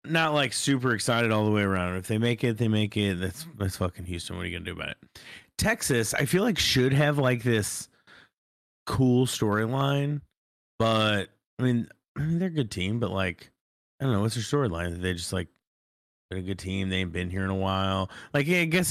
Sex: male